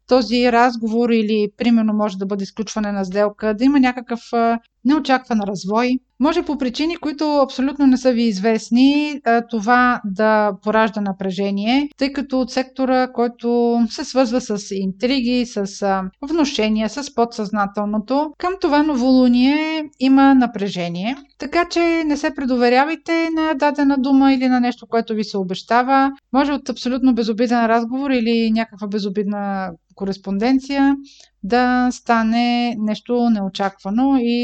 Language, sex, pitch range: Bulgarian, female, 215-265 Hz